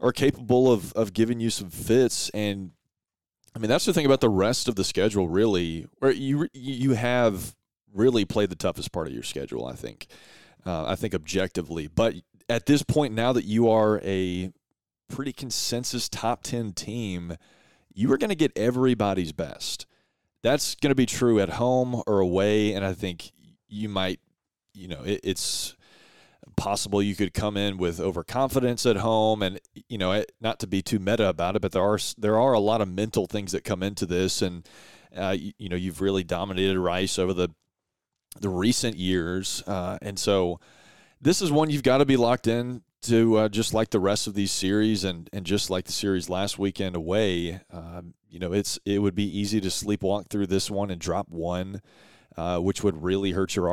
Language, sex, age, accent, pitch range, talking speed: English, male, 30-49, American, 95-115 Hz, 195 wpm